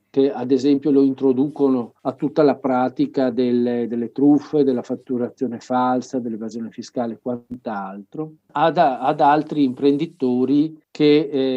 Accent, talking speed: native, 130 wpm